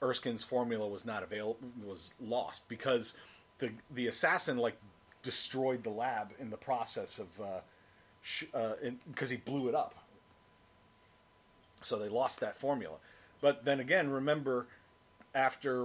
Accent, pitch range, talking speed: American, 110-130 Hz, 140 wpm